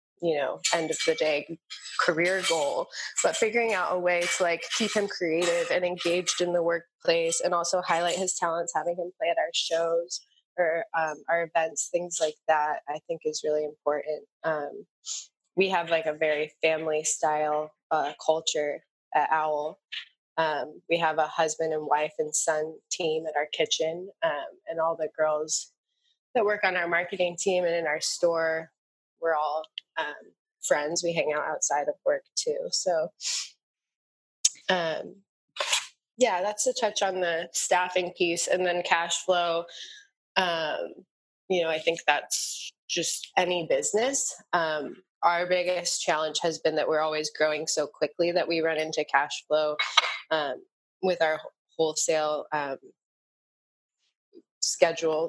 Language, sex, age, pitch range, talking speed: English, female, 20-39, 155-185 Hz, 155 wpm